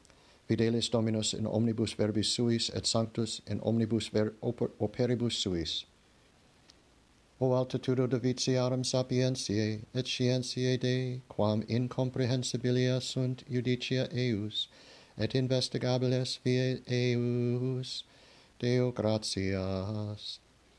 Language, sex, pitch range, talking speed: English, male, 105-125 Hz, 90 wpm